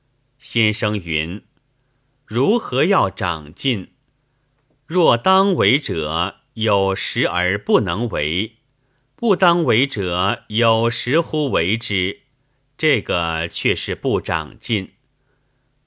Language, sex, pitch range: Chinese, male, 100-140 Hz